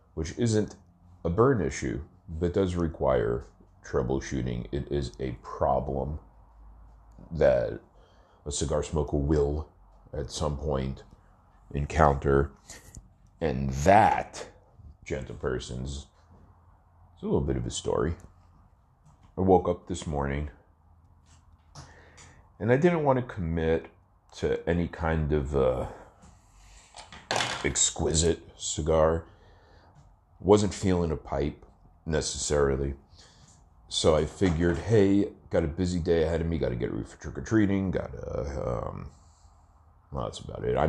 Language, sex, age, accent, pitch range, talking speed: English, male, 40-59, American, 75-90 Hz, 120 wpm